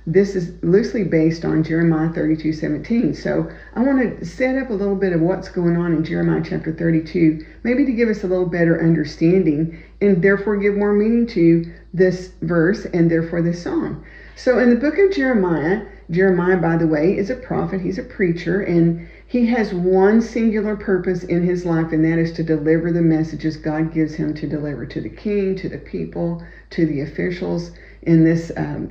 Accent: American